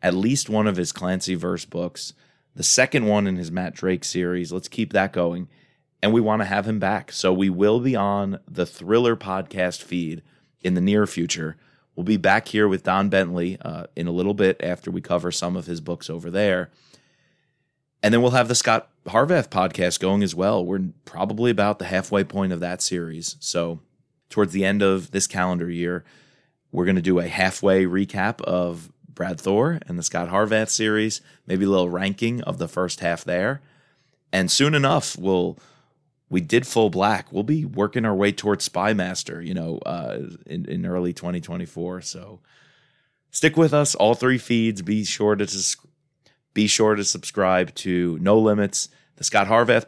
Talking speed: 185 wpm